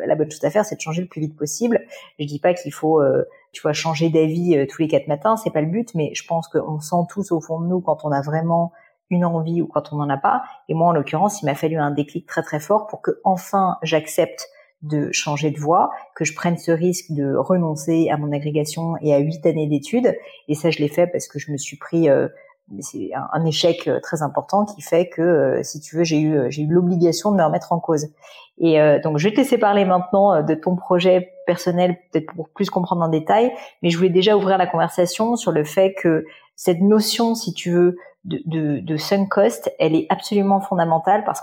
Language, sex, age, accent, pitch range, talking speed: French, female, 40-59, French, 155-190 Hz, 240 wpm